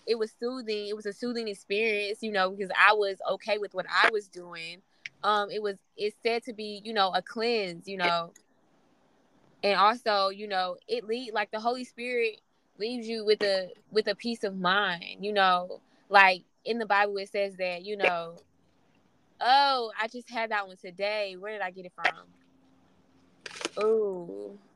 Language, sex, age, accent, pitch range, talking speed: English, female, 10-29, American, 185-220 Hz, 185 wpm